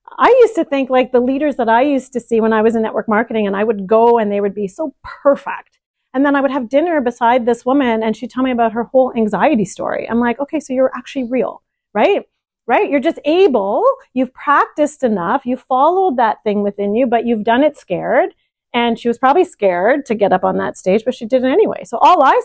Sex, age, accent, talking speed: female, 40-59, American, 245 wpm